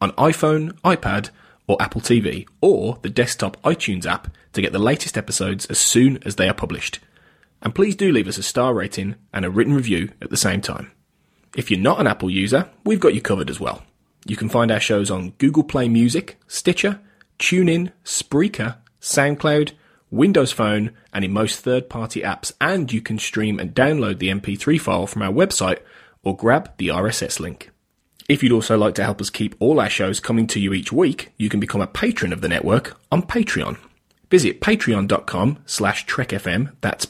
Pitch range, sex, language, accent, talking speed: 100-140 Hz, male, English, British, 190 wpm